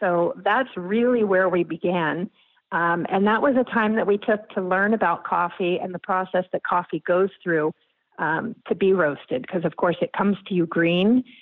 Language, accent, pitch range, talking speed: English, American, 175-215 Hz, 200 wpm